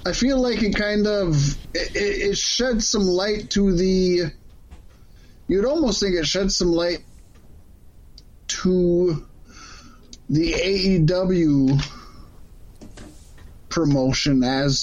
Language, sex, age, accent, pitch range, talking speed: English, male, 20-39, American, 135-190 Hz, 100 wpm